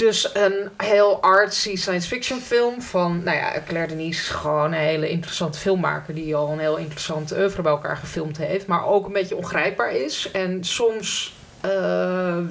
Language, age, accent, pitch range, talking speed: Dutch, 30-49, Dutch, 155-200 Hz, 165 wpm